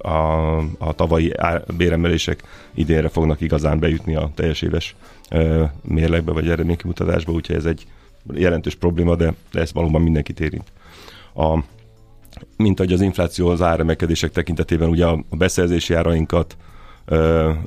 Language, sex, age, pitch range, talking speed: Hungarian, male, 30-49, 80-85 Hz, 135 wpm